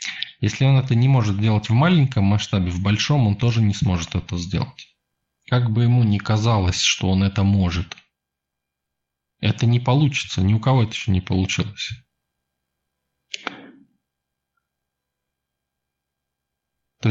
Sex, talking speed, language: male, 130 wpm, Russian